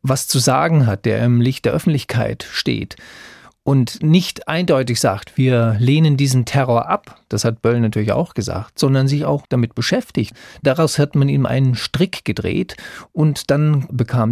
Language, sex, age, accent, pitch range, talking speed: German, male, 40-59, German, 110-140 Hz, 170 wpm